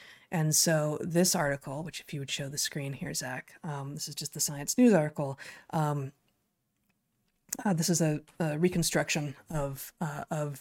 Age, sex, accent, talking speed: 20-39, female, American, 165 wpm